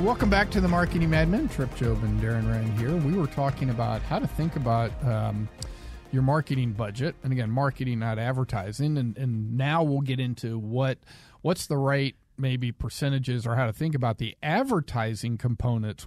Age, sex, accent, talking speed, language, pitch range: 40-59, male, American, 185 wpm, English, 115-145 Hz